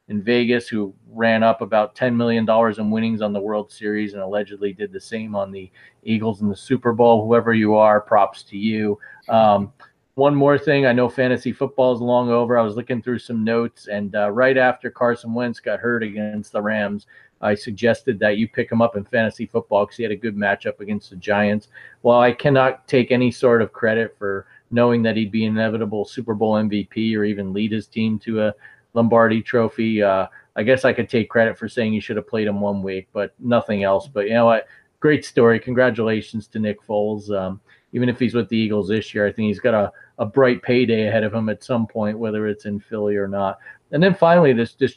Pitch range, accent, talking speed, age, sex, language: 105-120 Hz, American, 225 wpm, 40-59, male, English